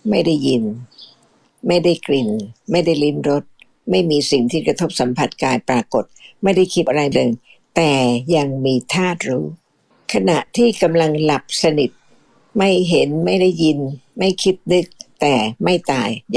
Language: Thai